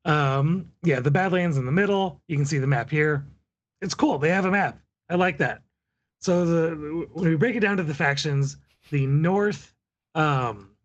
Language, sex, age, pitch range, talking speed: English, male, 30-49, 135-165 Hz, 195 wpm